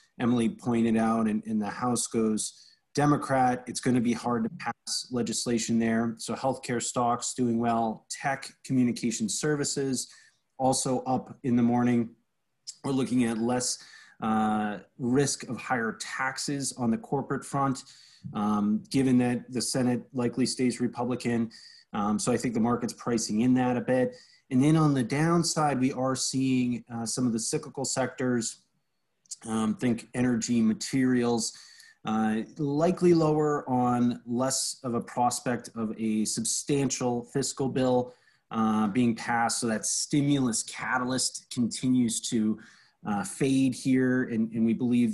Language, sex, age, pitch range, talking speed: English, male, 30-49, 115-135 Hz, 145 wpm